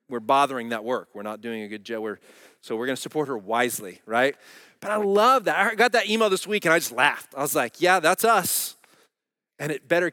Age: 30-49